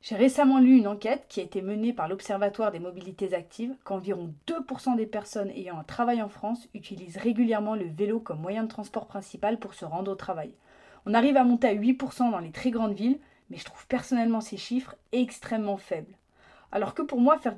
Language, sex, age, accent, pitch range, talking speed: French, female, 30-49, French, 205-255 Hz, 210 wpm